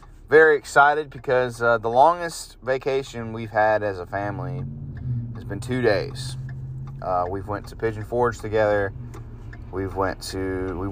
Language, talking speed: English, 150 wpm